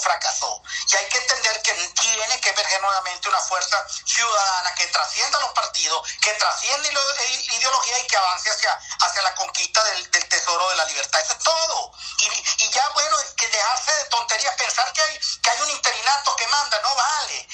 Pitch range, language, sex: 200-295 Hz, Spanish, male